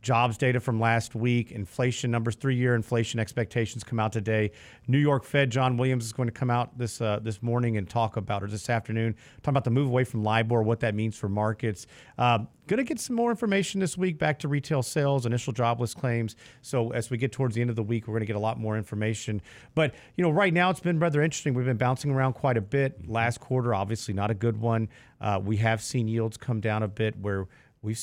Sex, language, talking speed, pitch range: male, English, 240 wpm, 110-130 Hz